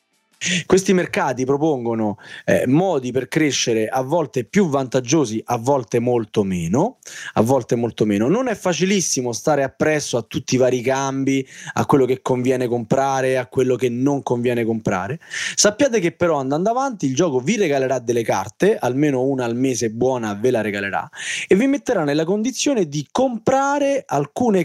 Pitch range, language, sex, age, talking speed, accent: 125-185 Hz, Italian, male, 20-39, 165 wpm, native